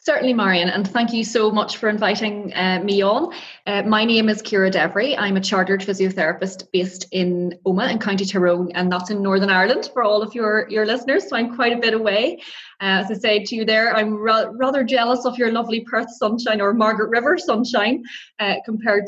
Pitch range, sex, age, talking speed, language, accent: 185-230 Hz, female, 20-39, 210 wpm, English, Irish